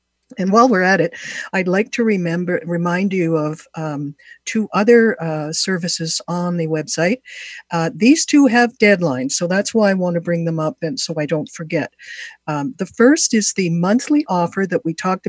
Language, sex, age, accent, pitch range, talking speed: English, female, 60-79, American, 155-205 Hz, 190 wpm